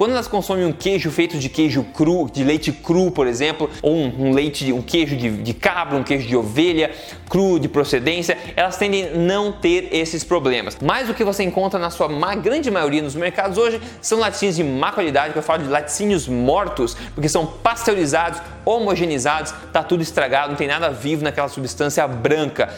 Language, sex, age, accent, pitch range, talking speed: Portuguese, male, 20-39, Brazilian, 150-205 Hz, 190 wpm